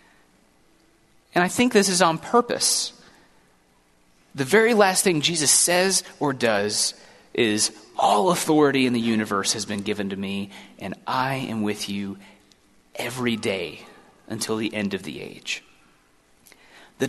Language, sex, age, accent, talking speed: English, male, 30-49, American, 140 wpm